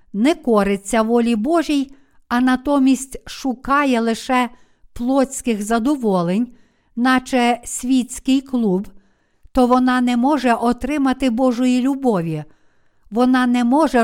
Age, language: 50-69, Ukrainian